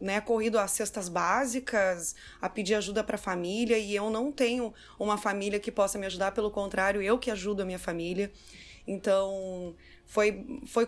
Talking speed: 175 wpm